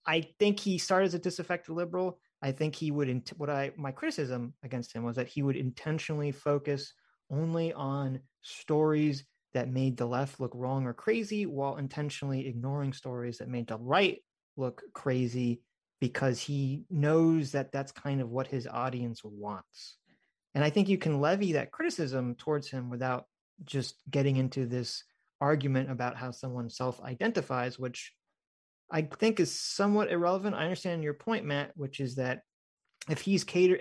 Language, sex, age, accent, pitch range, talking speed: English, male, 30-49, American, 130-155 Hz, 165 wpm